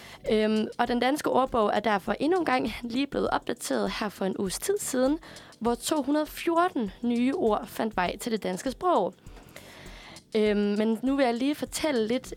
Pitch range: 205-260 Hz